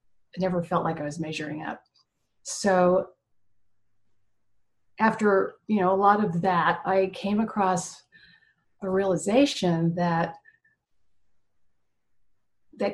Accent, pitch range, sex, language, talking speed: American, 165-190 Hz, female, English, 100 wpm